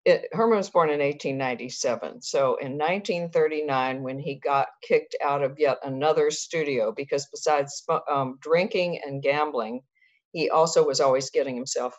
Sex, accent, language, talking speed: female, American, English, 145 wpm